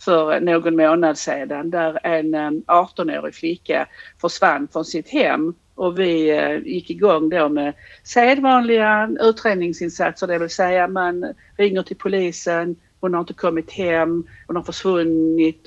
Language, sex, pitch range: Swedish, female, 155-190 Hz